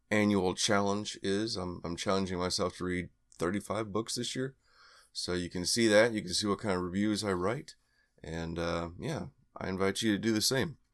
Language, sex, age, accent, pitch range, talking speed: English, male, 30-49, American, 95-115 Hz, 205 wpm